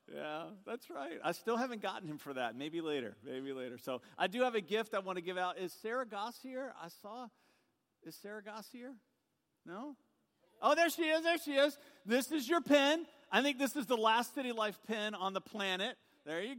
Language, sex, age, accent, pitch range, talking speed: English, male, 50-69, American, 175-230 Hz, 220 wpm